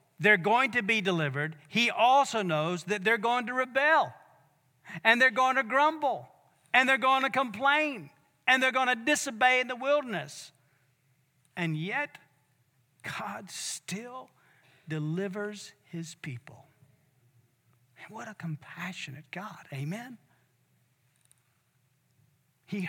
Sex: male